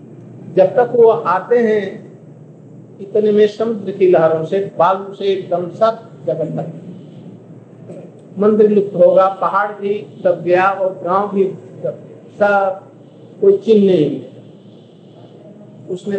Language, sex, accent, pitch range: Hindi, male, native, 165-200 Hz